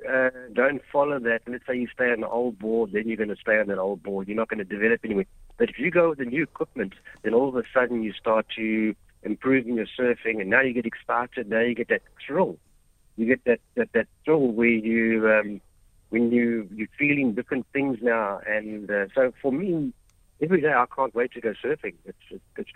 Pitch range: 105-125 Hz